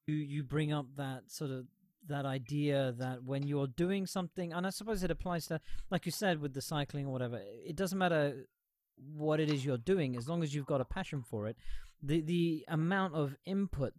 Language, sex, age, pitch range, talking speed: English, male, 30-49, 125-160 Hz, 215 wpm